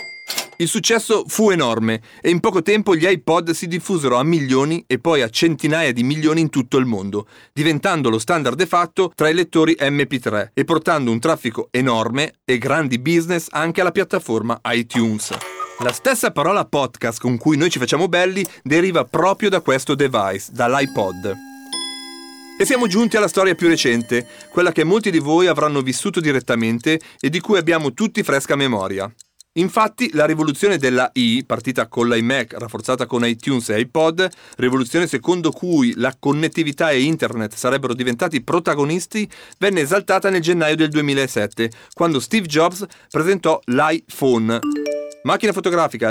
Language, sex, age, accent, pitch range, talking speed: Italian, male, 40-59, native, 125-180 Hz, 155 wpm